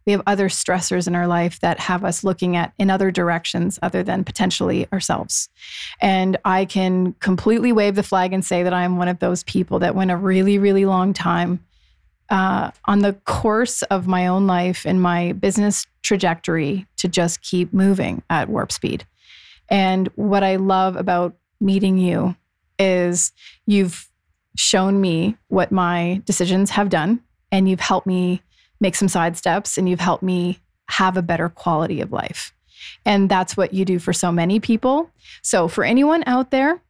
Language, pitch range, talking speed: English, 180-200 Hz, 175 wpm